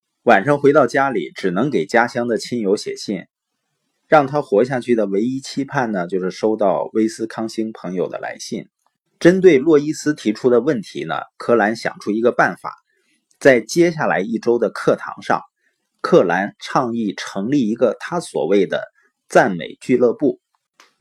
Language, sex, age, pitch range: Chinese, male, 30-49, 115-150 Hz